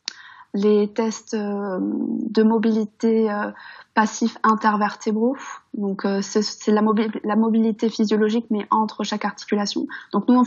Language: French